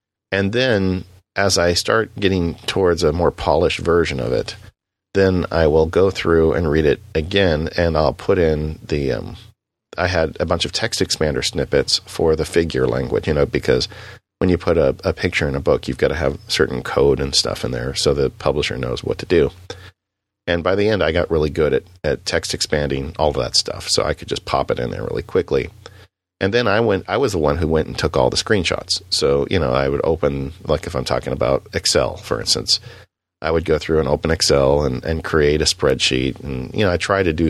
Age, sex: 40-59, male